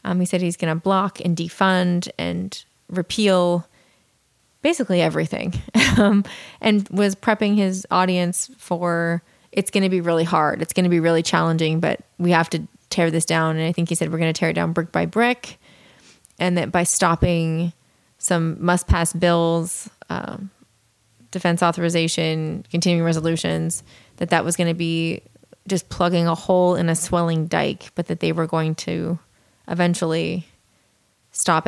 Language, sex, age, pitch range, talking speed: English, female, 20-39, 165-185 Hz, 165 wpm